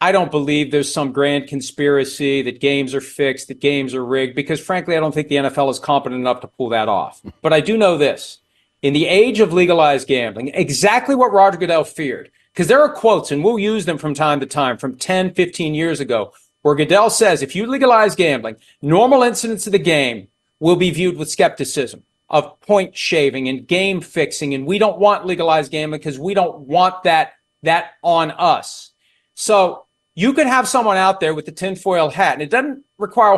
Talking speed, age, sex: 205 wpm, 40-59, male